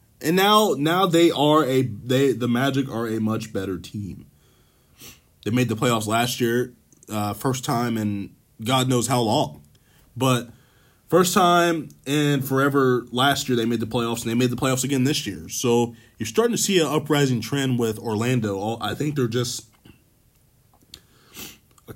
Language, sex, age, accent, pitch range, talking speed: English, male, 20-39, American, 105-130 Hz, 170 wpm